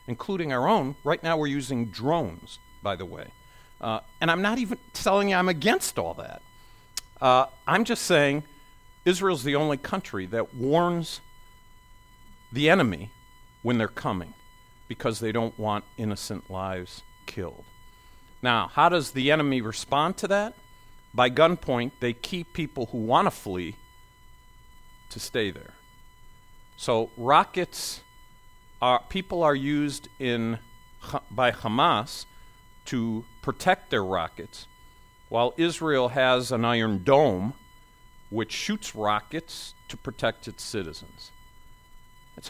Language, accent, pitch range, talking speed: English, American, 110-155 Hz, 125 wpm